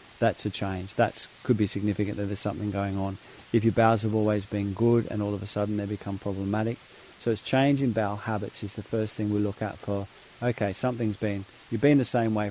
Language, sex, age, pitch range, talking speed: English, male, 40-59, 105-120 Hz, 235 wpm